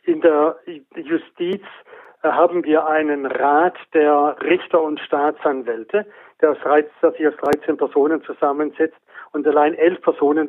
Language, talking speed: German, 120 wpm